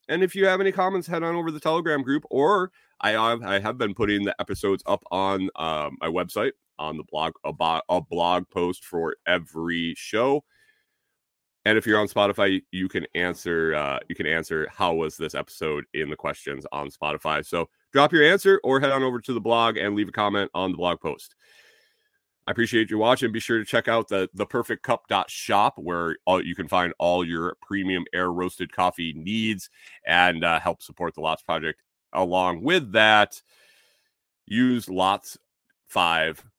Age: 30-49